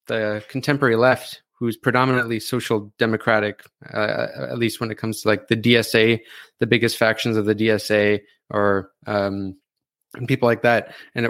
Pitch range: 110-130 Hz